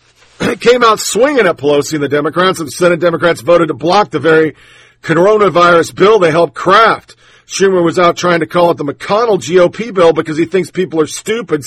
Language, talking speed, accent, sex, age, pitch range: English, 205 wpm, American, male, 50-69, 145-185 Hz